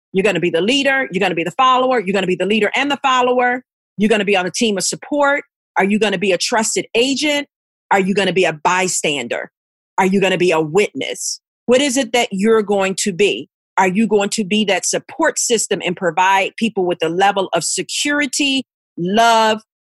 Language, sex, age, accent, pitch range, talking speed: English, female, 40-59, American, 195-265 Hz, 210 wpm